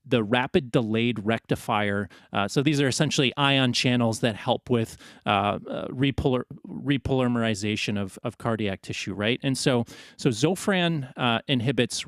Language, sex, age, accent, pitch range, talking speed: English, male, 30-49, American, 115-140 Hz, 145 wpm